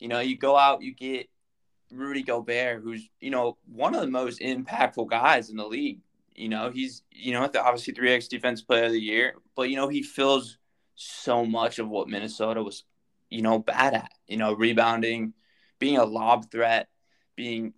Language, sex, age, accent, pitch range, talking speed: English, male, 20-39, American, 115-130 Hz, 190 wpm